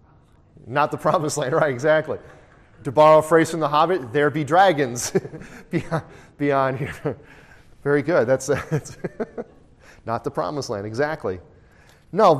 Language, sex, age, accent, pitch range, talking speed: English, male, 30-49, American, 125-155 Hz, 145 wpm